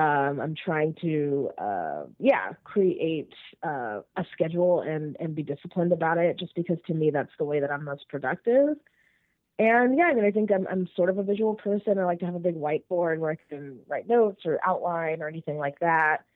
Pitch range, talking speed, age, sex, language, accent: 155-185 Hz, 215 wpm, 20-39, female, English, American